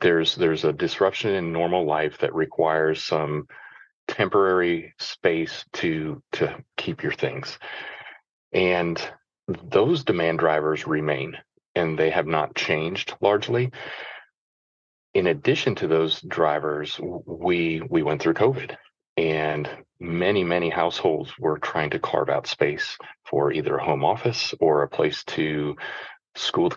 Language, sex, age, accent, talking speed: English, male, 30-49, American, 130 wpm